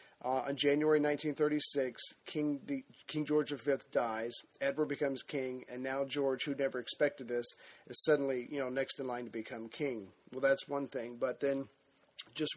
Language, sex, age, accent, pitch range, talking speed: English, male, 40-59, American, 130-145 Hz, 175 wpm